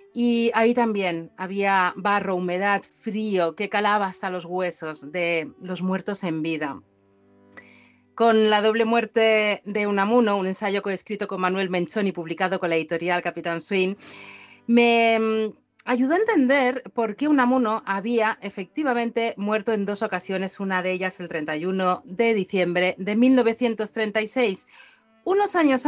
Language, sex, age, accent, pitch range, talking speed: Spanish, female, 40-59, Spanish, 180-225 Hz, 145 wpm